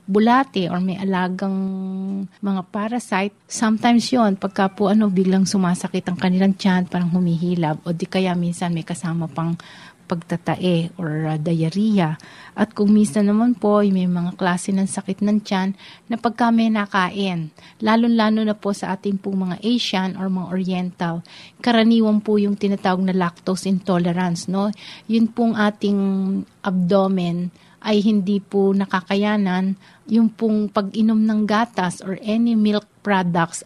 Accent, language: native, Filipino